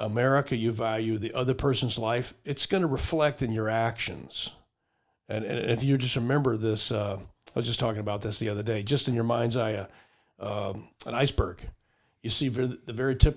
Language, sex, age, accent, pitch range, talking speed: English, male, 50-69, American, 110-130 Hz, 200 wpm